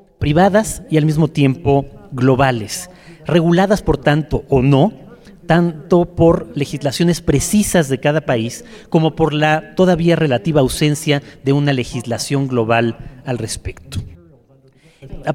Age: 40-59